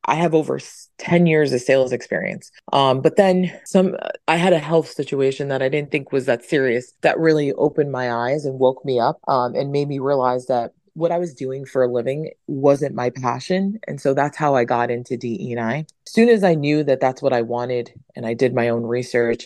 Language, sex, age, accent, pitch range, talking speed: English, female, 30-49, American, 120-150 Hz, 225 wpm